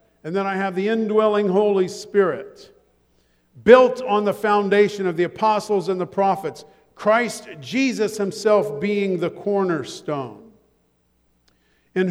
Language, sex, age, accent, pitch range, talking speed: English, male, 50-69, American, 135-205 Hz, 125 wpm